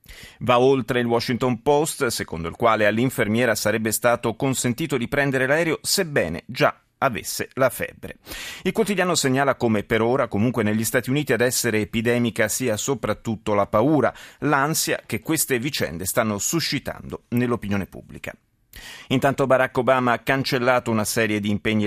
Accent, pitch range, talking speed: native, 105-135 Hz, 150 wpm